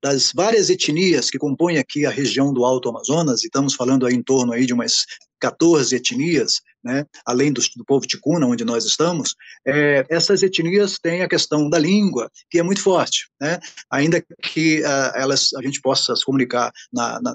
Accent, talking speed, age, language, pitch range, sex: Brazilian, 185 wpm, 20-39, Portuguese, 130-155 Hz, male